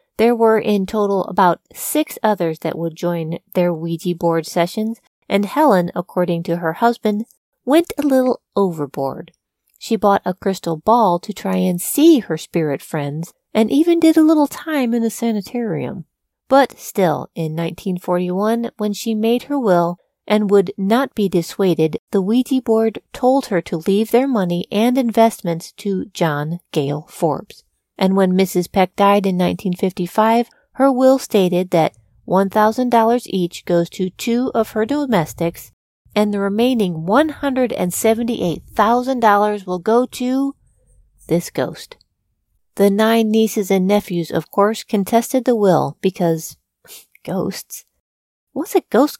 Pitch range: 175-230 Hz